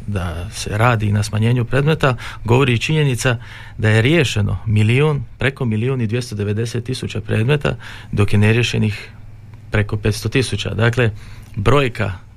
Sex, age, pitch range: male, 40-59, 105-125 Hz